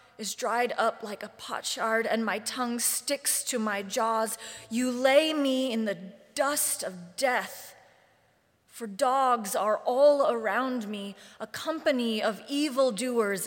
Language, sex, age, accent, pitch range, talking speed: English, female, 30-49, American, 195-235 Hz, 140 wpm